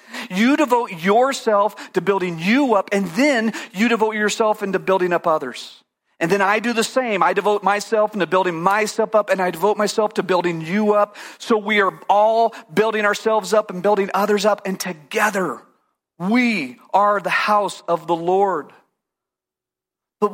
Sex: male